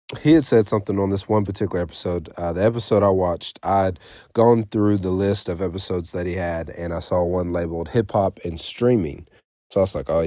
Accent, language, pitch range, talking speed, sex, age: American, English, 85-100 Hz, 220 wpm, male, 30-49